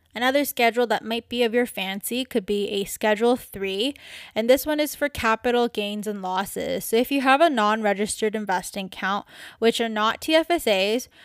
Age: 10-29